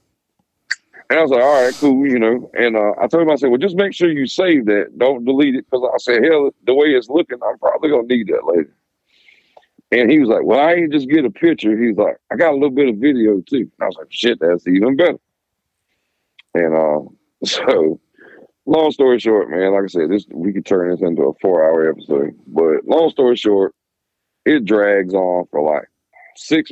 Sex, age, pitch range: male, 50-69, 100-135 Hz